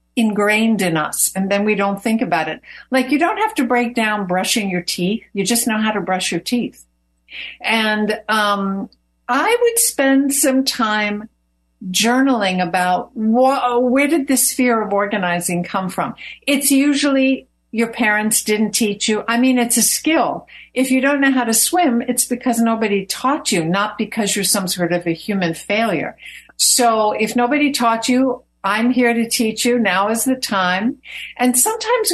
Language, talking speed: English, 180 wpm